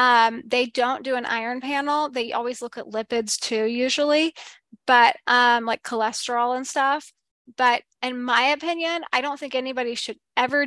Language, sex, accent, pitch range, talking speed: English, female, American, 225-260 Hz, 170 wpm